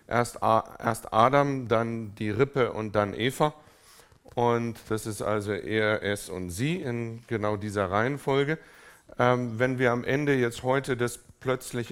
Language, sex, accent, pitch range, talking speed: German, male, German, 110-130 Hz, 145 wpm